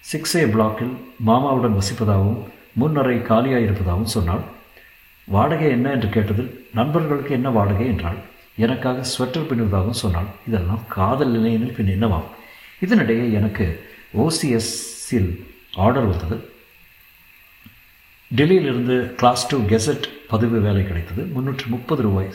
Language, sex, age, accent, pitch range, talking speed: Tamil, male, 50-69, native, 100-125 Hz, 100 wpm